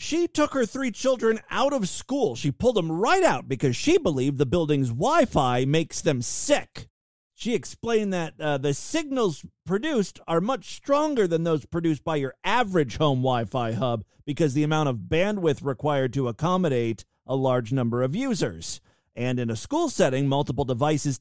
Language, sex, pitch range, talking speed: English, male, 135-210 Hz, 175 wpm